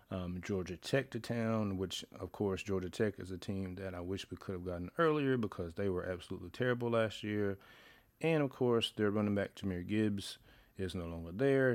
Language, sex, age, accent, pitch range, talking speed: English, male, 30-49, American, 95-120 Hz, 205 wpm